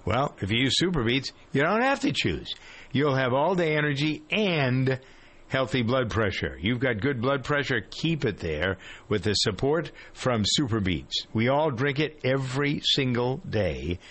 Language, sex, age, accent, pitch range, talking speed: English, male, 50-69, American, 105-135 Hz, 165 wpm